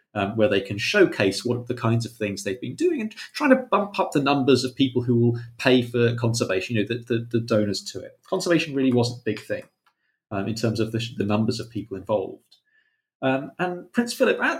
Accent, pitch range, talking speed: British, 120-170 Hz, 230 wpm